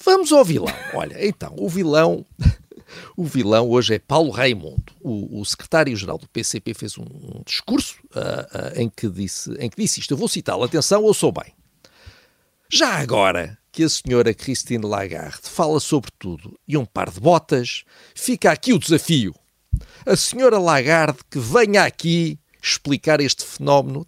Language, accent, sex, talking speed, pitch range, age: Portuguese, Brazilian, male, 165 wpm, 110-160 Hz, 50-69